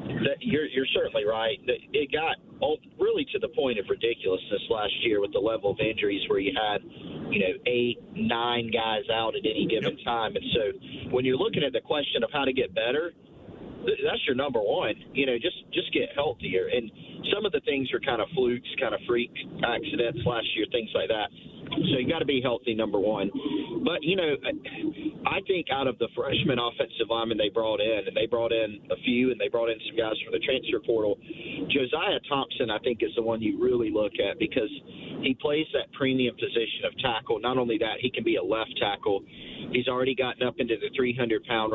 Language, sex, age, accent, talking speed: English, male, 40-59, American, 210 wpm